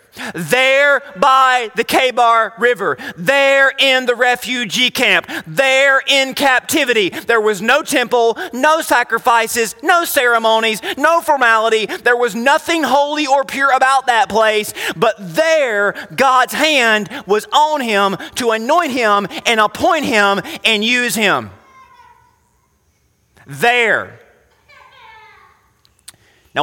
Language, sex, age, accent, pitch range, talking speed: English, male, 30-49, American, 205-270 Hz, 115 wpm